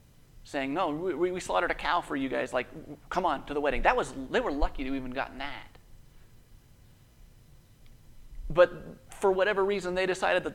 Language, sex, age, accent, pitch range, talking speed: English, male, 30-49, American, 130-195 Hz, 180 wpm